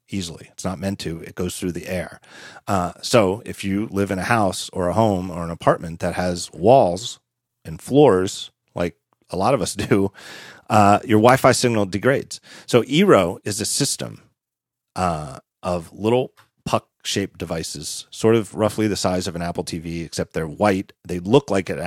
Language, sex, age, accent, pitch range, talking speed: English, male, 40-59, American, 90-110 Hz, 180 wpm